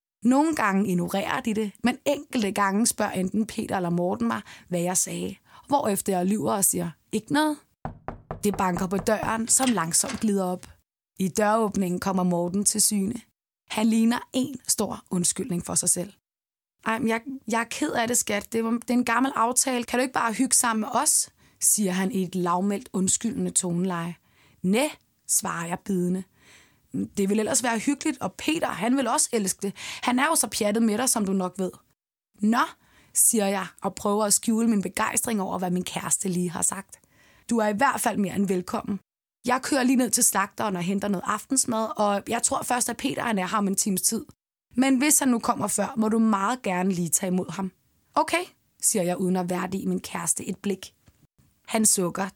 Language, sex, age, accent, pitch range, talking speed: Danish, female, 20-39, native, 190-235 Hz, 200 wpm